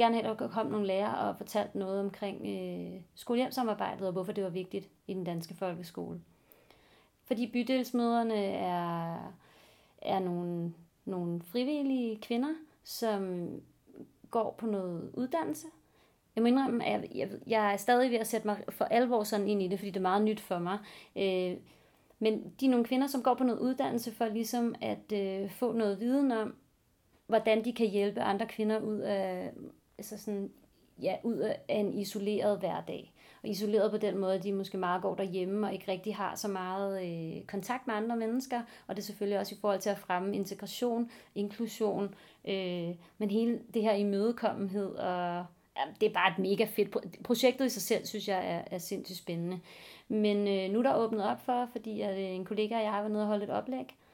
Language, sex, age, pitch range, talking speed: Danish, female, 30-49, 195-230 Hz, 195 wpm